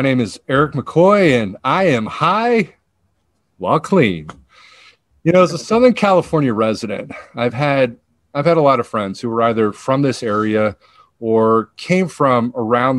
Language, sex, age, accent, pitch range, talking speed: English, male, 40-59, American, 105-145 Hz, 165 wpm